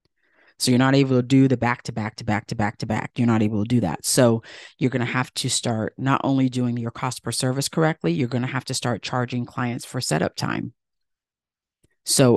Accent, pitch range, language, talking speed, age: American, 125-155 Hz, English, 200 wpm, 40-59